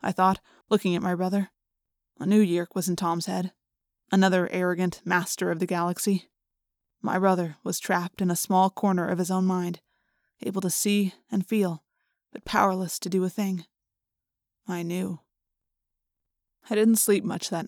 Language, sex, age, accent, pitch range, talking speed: English, female, 20-39, American, 175-195 Hz, 165 wpm